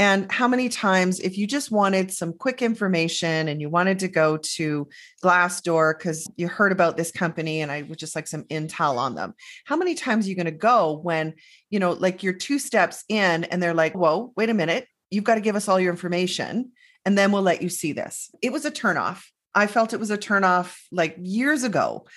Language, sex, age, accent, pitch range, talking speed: English, female, 30-49, American, 165-210 Hz, 225 wpm